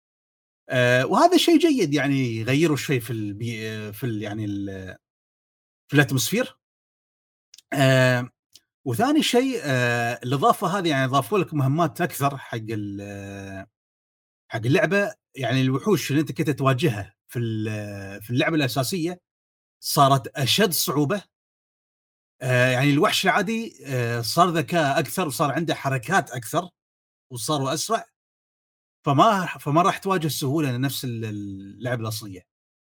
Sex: male